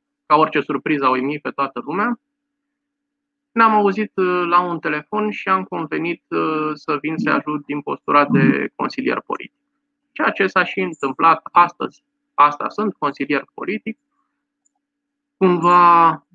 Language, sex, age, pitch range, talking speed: Romanian, male, 20-39, 145-245 Hz, 130 wpm